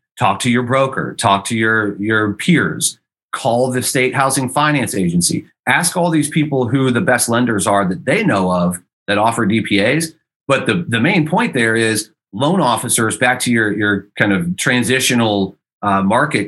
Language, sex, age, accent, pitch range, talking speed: English, male, 30-49, American, 100-130 Hz, 180 wpm